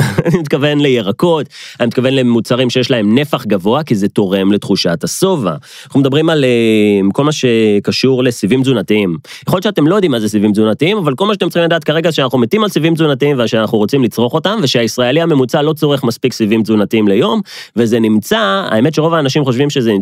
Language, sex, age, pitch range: Hebrew, male, 30-49, 105-150 Hz